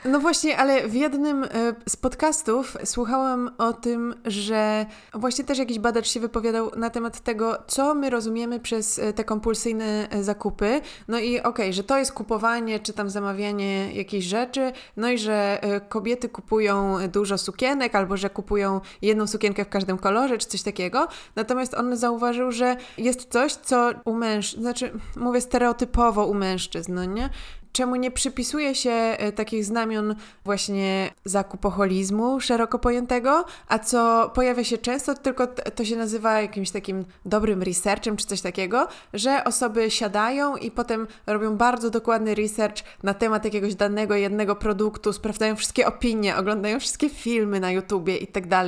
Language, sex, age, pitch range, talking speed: Polish, female, 20-39, 210-255 Hz, 150 wpm